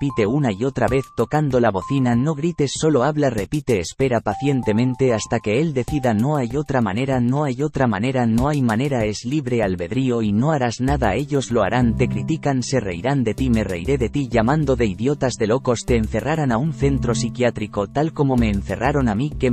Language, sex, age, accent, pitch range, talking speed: English, male, 30-49, Spanish, 110-140 Hz, 210 wpm